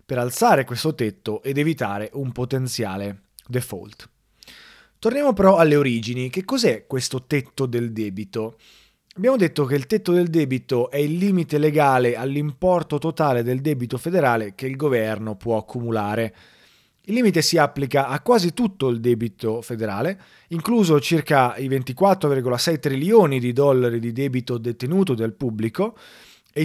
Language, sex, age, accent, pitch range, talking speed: Italian, male, 30-49, native, 115-150 Hz, 140 wpm